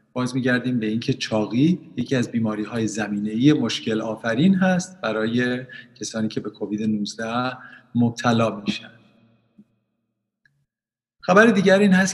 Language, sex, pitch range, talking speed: Persian, male, 115-150 Hz, 130 wpm